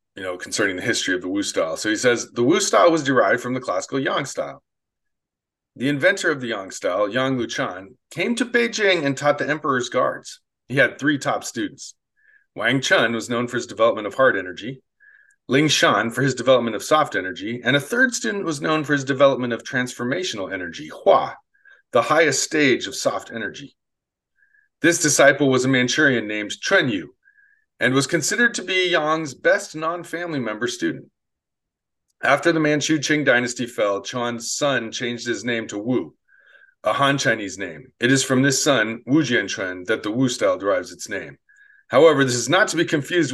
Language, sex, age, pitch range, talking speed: English, male, 40-59, 125-180 Hz, 190 wpm